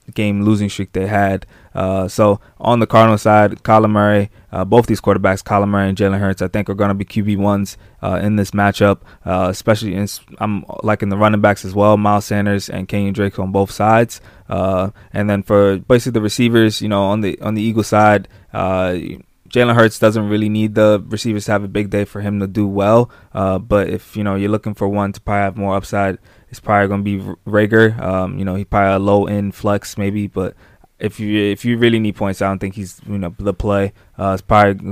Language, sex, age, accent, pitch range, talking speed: English, male, 20-39, American, 100-105 Hz, 230 wpm